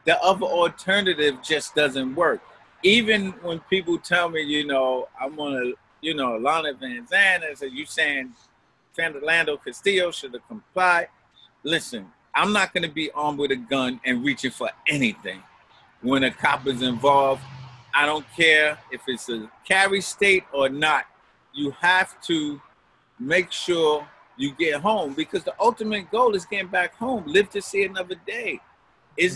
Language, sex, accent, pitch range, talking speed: English, male, American, 140-185 Hz, 160 wpm